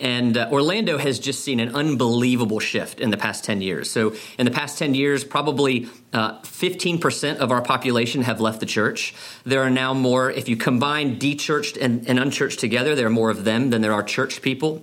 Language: English